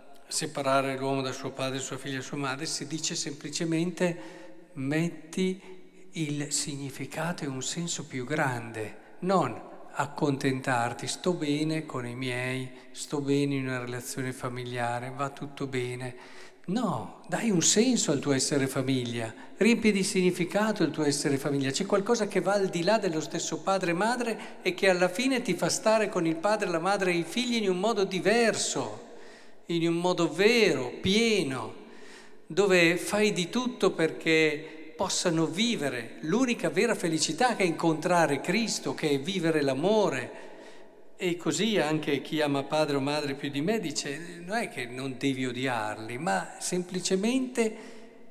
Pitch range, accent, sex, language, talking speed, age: 140-195 Hz, native, male, Italian, 155 wpm, 50-69